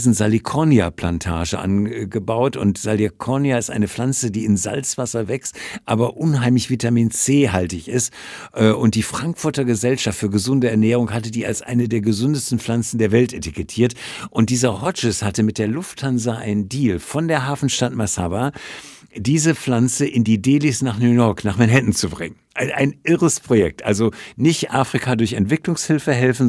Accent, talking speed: German, 155 wpm